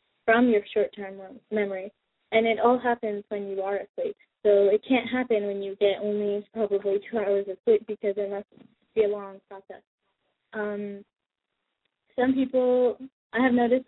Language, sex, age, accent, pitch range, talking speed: English, female, 20-39, American, 200-230 Hz, 170 wpm